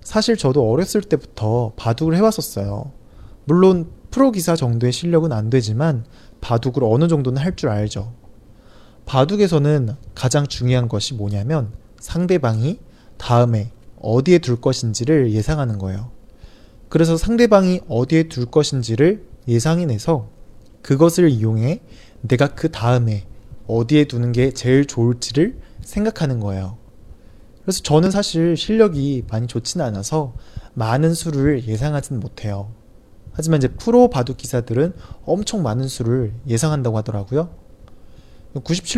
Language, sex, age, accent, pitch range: Chinese, male, 20-39, Korean, 110-160 Hz